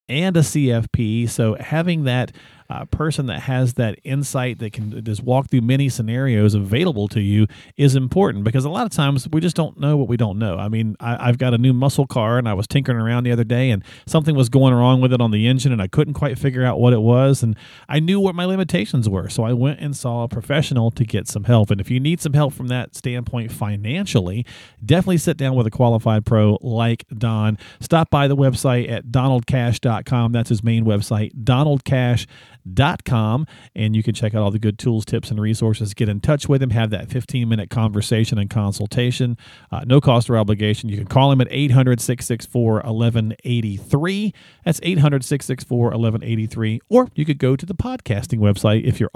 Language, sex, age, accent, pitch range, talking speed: English, male, 40-59, American, 110-135 Hz, 210 wpm